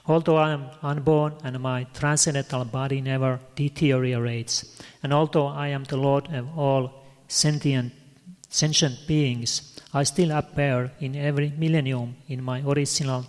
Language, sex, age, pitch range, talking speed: Italian, male, 30-49, 130-150 Hz, 135 wpm